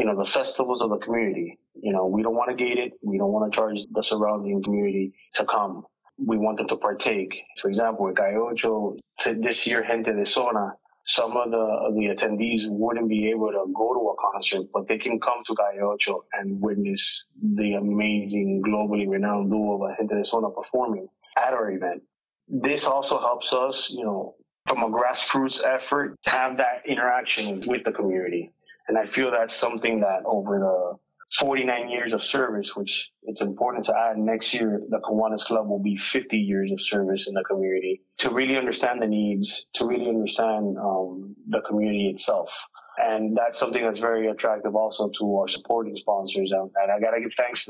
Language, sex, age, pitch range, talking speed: English, male, 30-49, 100-120 Hz, 195 wpm